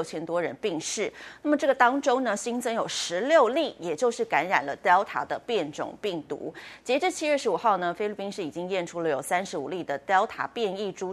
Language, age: Chinese, 30-49